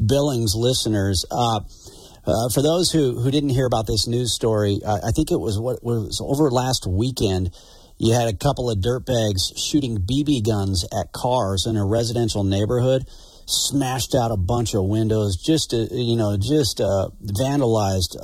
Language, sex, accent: English, male, American